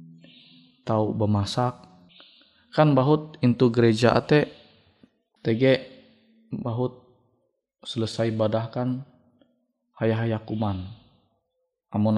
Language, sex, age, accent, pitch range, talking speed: Indonesian, male, 20-39, native, 110-150 Hz, 70 wpm